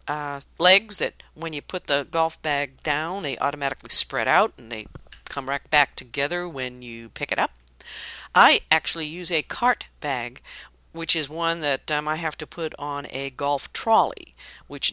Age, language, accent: 50-69, English, American